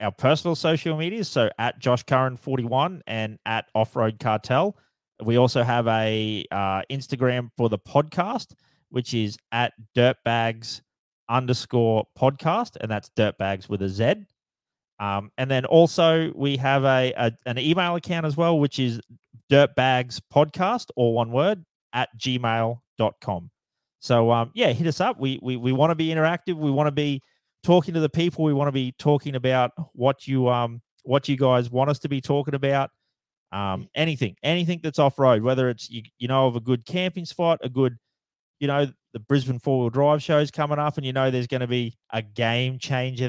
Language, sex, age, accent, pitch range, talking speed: English, male, 30-49, Australian, 120-150 Hz, 185 wpm